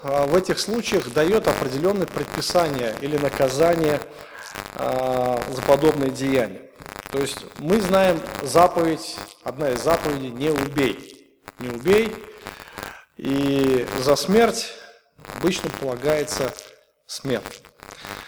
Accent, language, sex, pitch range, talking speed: native, Russian, male, 135-185 Hz, 95 wpm